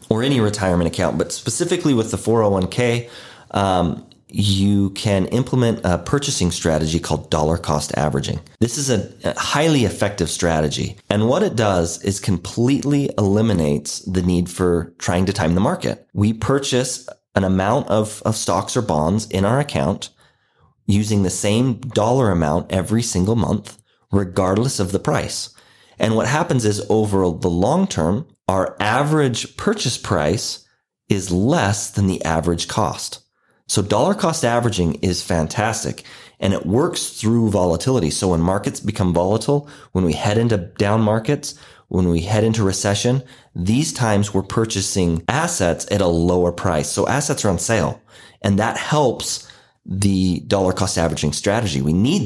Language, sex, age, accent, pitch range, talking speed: English, male, 30-49, American, 90-115 Hz, 155 wpm